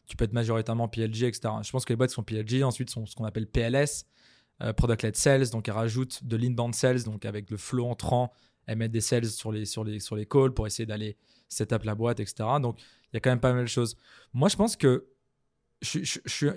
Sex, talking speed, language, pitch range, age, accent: male, 245 wpm, French, 115-135 Hz, 20-39, French